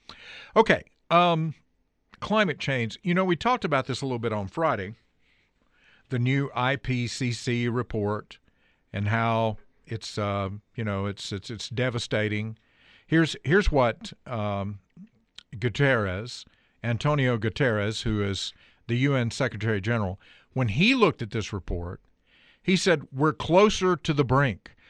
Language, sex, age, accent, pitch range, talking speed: English, male, 50-69, American, 110-155 Hz, 135 wpm